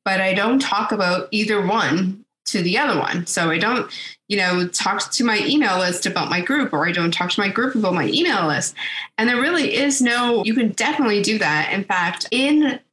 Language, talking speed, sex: English, 225 wpm, female